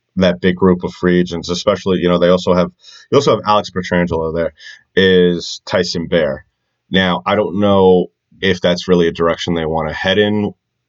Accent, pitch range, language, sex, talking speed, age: American, 85-95 Hz, English, male, 195 wpm, 30-49